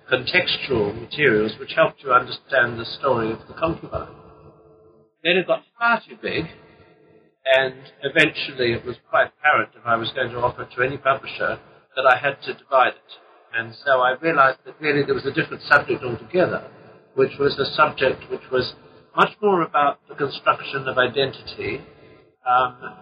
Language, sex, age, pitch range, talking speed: English, male, 60-79, 125-160 Hz, 170 wpm